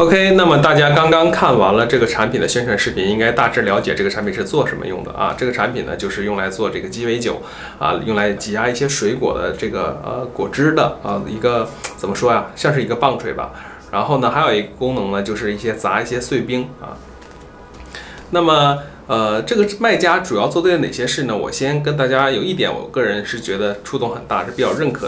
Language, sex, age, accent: Chinese, male, 20-39, native